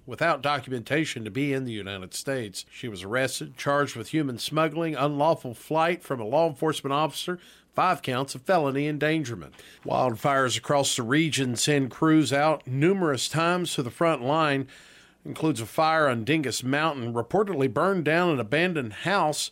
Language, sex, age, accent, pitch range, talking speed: English, male, 50-69, American, 130-160 Hz, 160 wpm